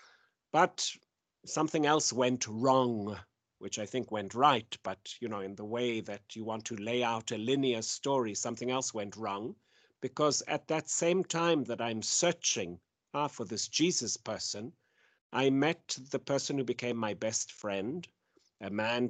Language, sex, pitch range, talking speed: English, male, 110-145 Hz, 165 wpm